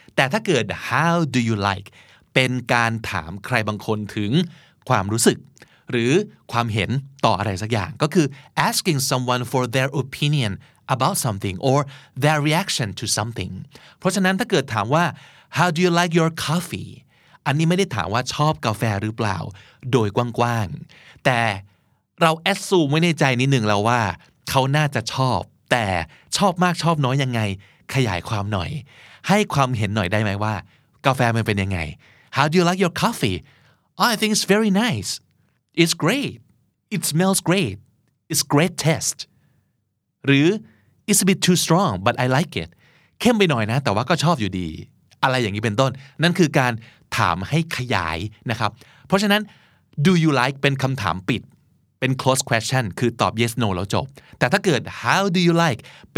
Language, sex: Thai, male